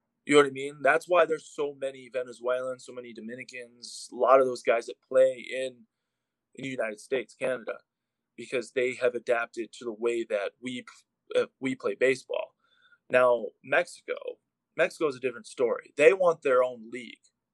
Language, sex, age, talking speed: English, male, 20-39, 180 wpm